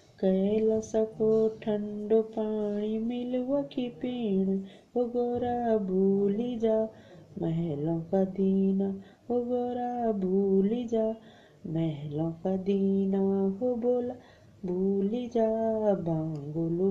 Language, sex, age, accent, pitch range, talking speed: Hindi, female, 30-49, native, 195-245 Hz, 65 wpm